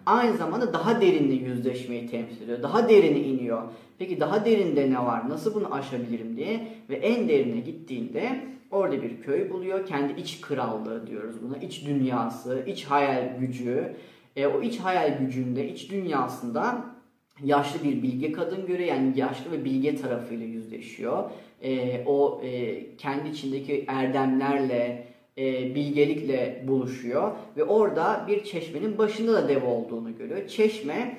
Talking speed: 140 wpm